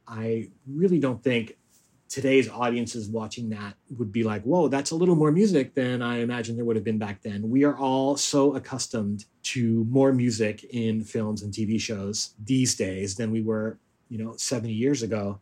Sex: male